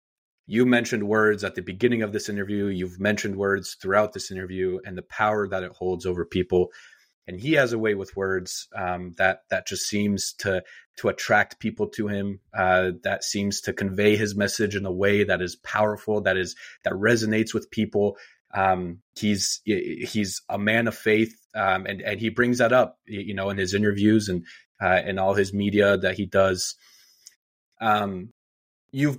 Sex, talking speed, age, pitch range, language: male, 185 wpm, 30-49, 95-110 Hz, English